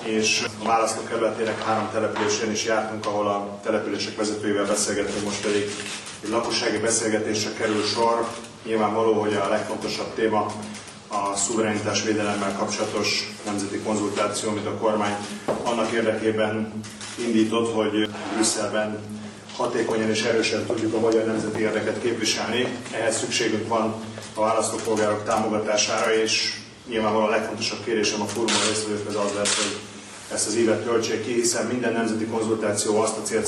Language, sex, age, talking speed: Hungarian, male, 30-49, 135 wpm